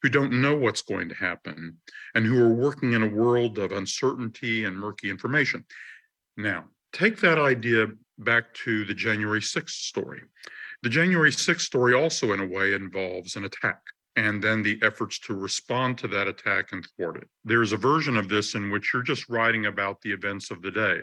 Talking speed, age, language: 195 wpm, 50-69, English